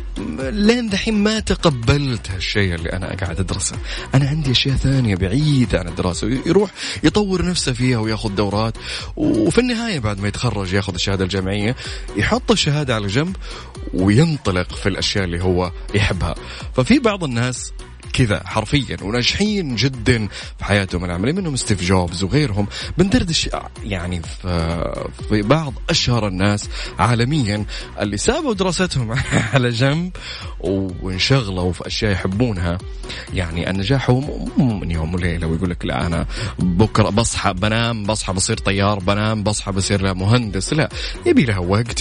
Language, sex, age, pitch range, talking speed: Arabic, male, 30-49, 95-140 Hz, 135 wpm